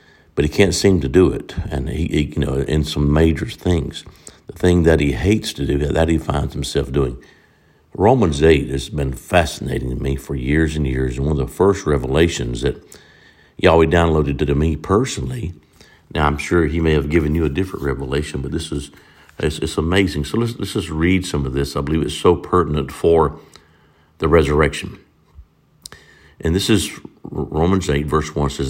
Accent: American